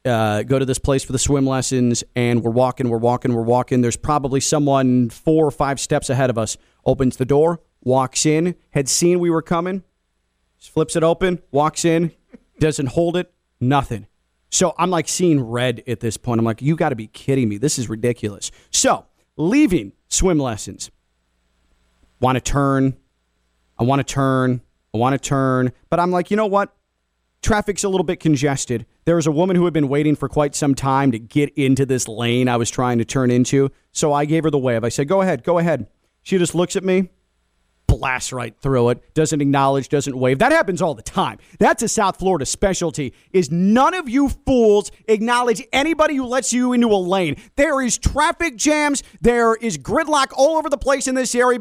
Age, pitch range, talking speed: 30-49, 125-195 Hz, 205 wpm